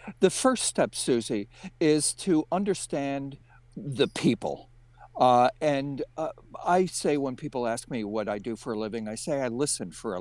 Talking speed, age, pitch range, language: 175 wpm, 60-79, 120-150 Hz, English